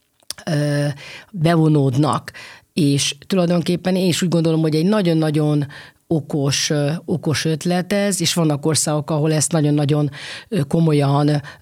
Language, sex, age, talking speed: Hungarian, female, 40-59, 110 wpm